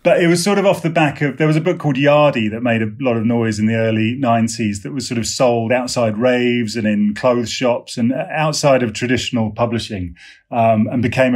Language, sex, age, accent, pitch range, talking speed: English, male, 30-49, British, 110-135 Hz, 230 wpm